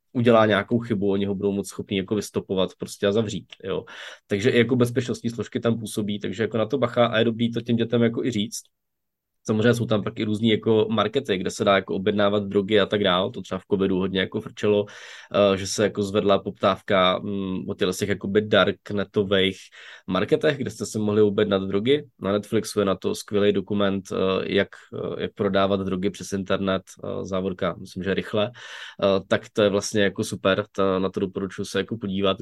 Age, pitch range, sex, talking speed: 20-39, 100-115 Hz, male, 195 wpm